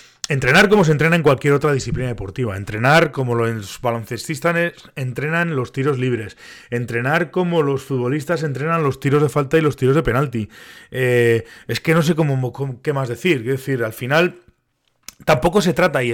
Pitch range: 125-160 Hz